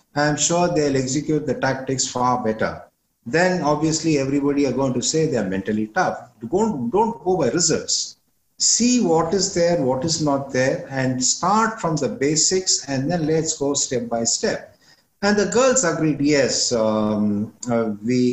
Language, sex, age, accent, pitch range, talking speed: English, male, 50-69, Indian, 110-145 Hz, 165 wpm